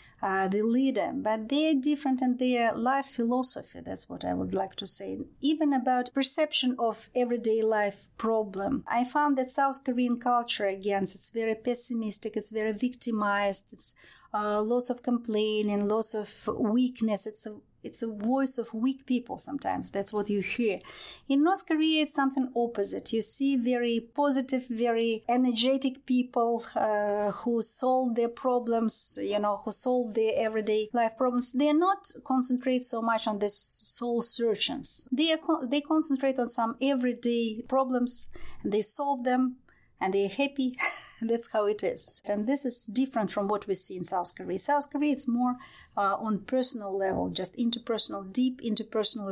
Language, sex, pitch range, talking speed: English, female, 210-255 Hz, 165 wpm